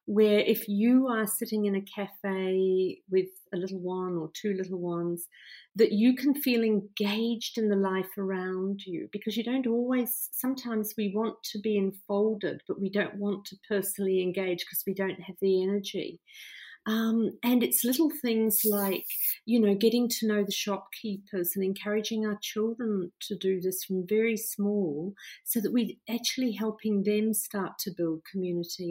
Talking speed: 170 wpm